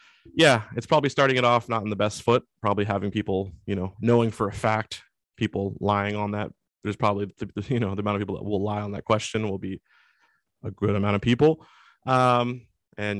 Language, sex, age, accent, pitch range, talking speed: English, male, 20-39, American, 100-120 Hz, 215 wpm